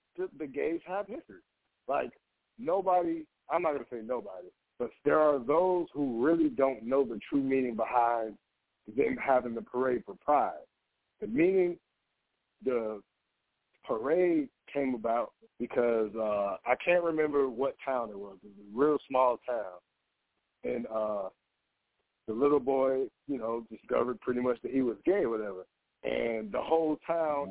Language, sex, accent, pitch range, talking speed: English, male, American, 115-150 Hz, 150 wpm